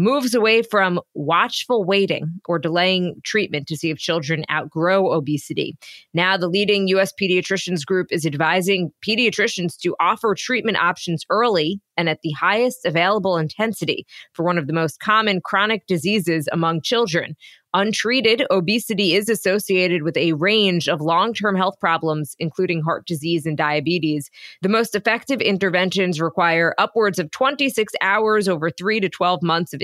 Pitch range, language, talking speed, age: 170-210 Hz, English, 150 wpm, 20-39